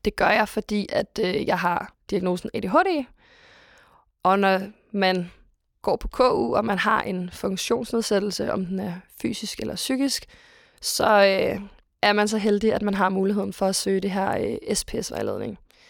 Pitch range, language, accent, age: 190-215 Hz, Danish, native, 20-39